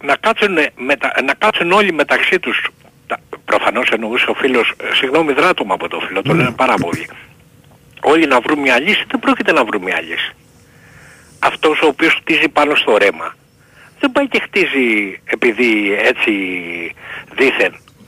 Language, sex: Greek, male